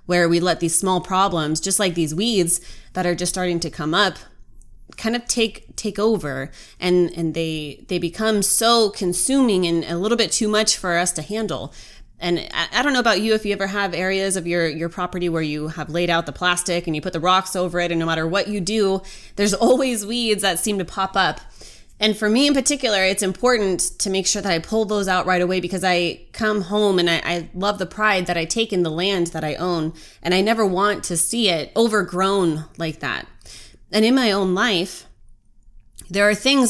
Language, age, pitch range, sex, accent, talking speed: English, 20-39, 175-210 Hz, female, American, 225 wpm